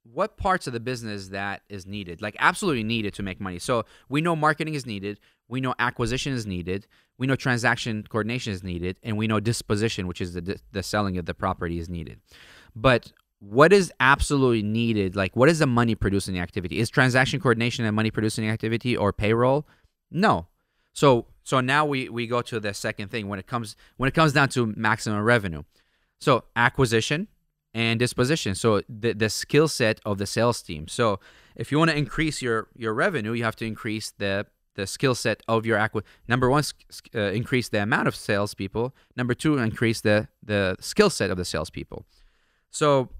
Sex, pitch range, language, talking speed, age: male, 100-130 Hz, English, 195 wpm, 20-39